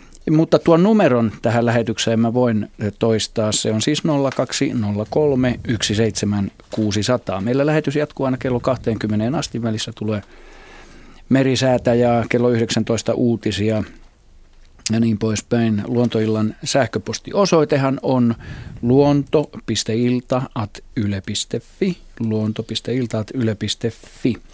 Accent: native